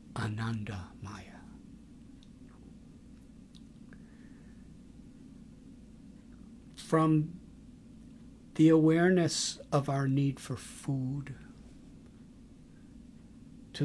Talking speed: 50 wpm